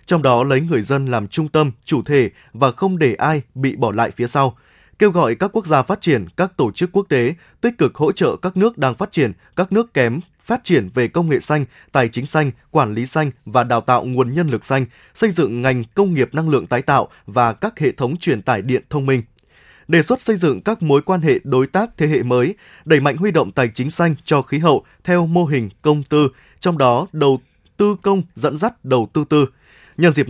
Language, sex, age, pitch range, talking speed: Vietnamese, male, 20-39, 130-170 Hz, 240 wpm